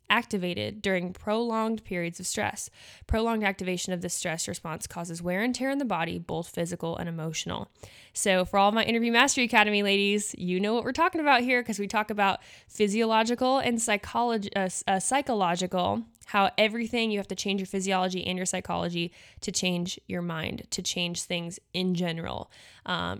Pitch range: 185-230 Hz